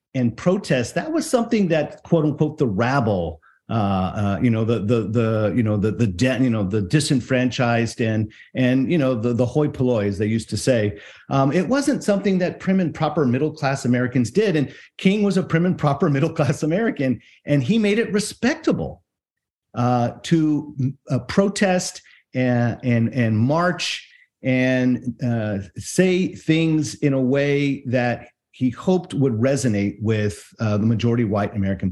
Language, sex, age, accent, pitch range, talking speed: English, male, 50-69, American, 110-145 Hz, 175 wpm